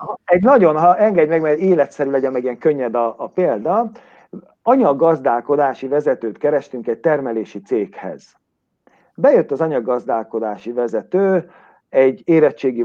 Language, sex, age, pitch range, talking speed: Hungarian, male, 50-69, 125-185 Hz, 120 wpm